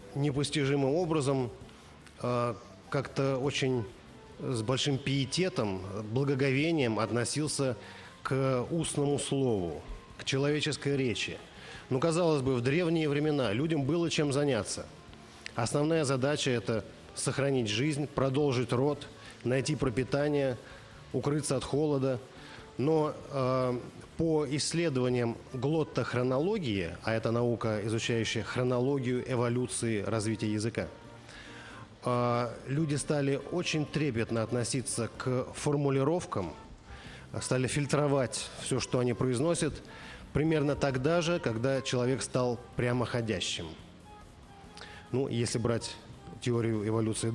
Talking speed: 100 wpm